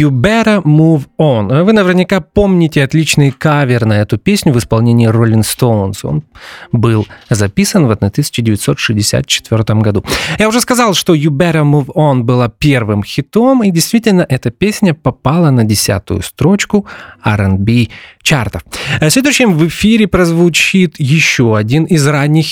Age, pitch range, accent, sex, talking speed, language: 30-49, 125-180 Hz, native, male, 140 wpm, Russian